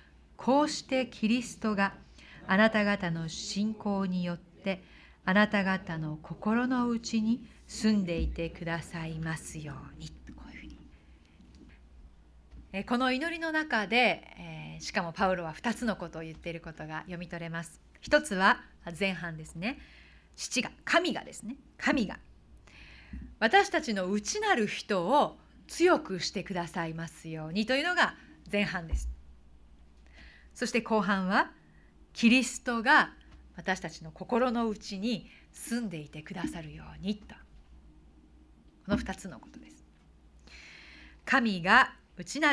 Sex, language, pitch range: female, Japanese, 160-235 Hz